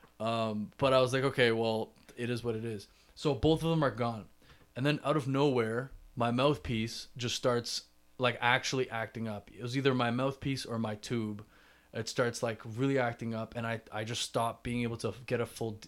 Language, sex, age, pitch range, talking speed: English, male, 20-39, 110-125 Hz, 210 wpm